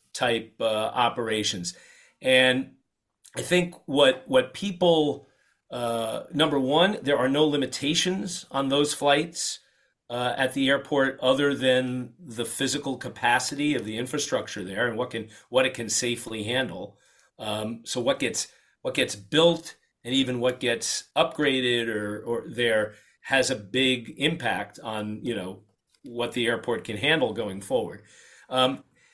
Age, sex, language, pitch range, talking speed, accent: 40-59, male, English, 115-150 Hz, 145 wpm, American